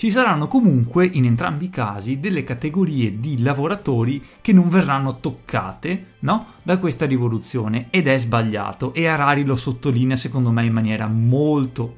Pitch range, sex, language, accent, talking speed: 125-190 Hz, male, Italian, native, 155 wpm